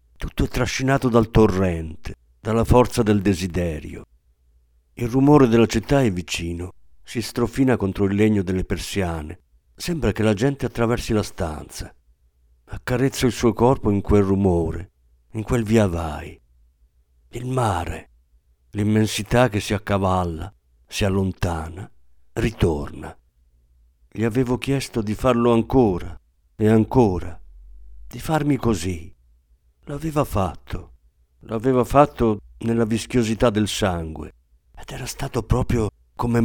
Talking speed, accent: 120 wpm, native